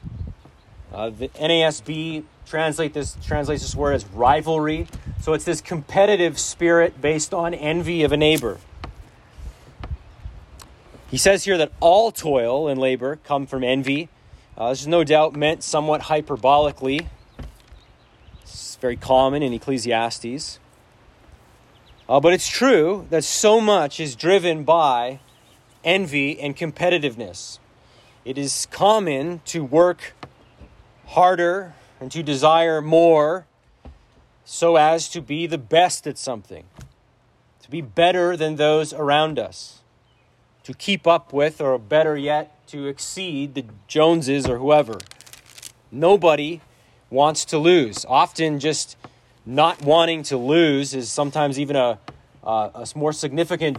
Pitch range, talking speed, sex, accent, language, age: 130-160 Hz, 125 wpm, male, American, English, 30-49